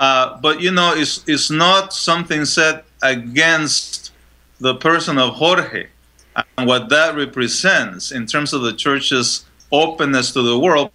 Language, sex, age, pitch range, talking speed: English, male, 30-49, 115-150 Hz, 150 wpm